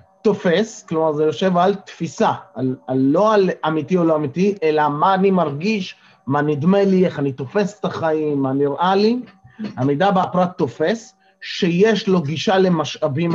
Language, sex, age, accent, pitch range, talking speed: Hebrew, male, 30-49, native, 150-200 Hz, 165 wpm